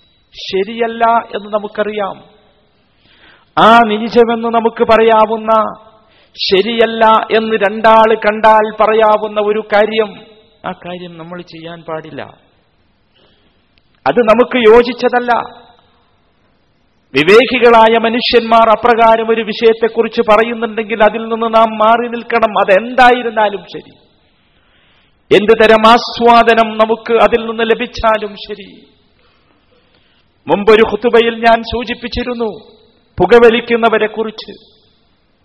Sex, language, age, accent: male, Malayalam, 50-69, native